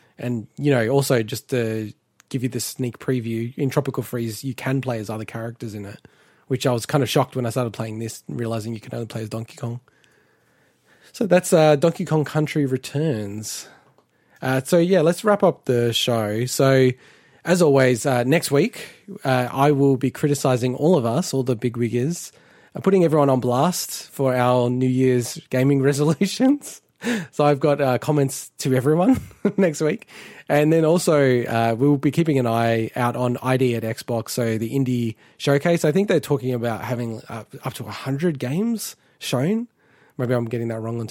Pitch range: 120-150 Hz